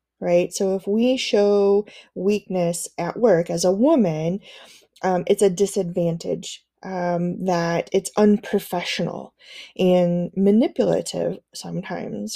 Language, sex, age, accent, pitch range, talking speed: English, female, 20-39, American, 180-230 Hz, 105 wpm